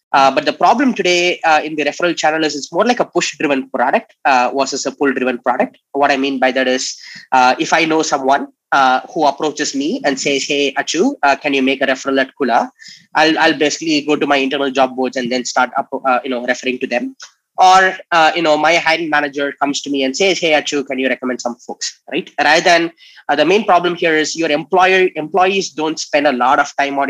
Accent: Indian